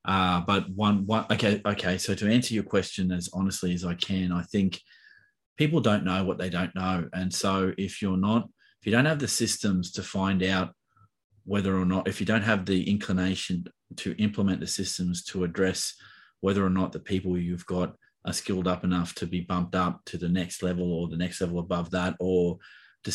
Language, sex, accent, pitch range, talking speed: English, male, Australian, 90-100 Hz, 210 wpm